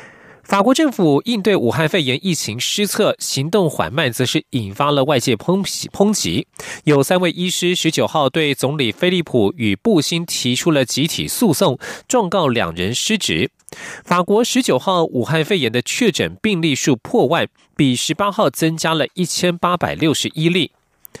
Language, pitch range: German, 135-185 Hz